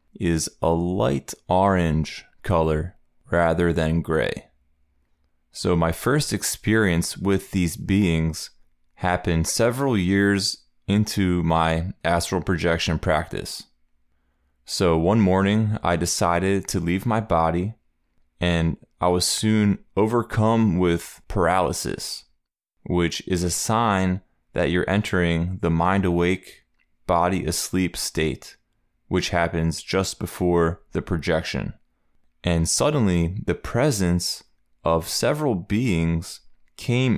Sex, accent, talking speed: male, American, 105 wpm